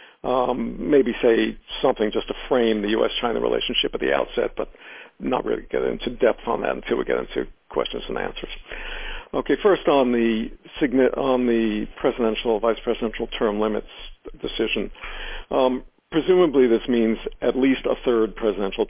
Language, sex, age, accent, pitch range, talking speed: English, male, 50-69, American, 110-145 Hz, 150 wpm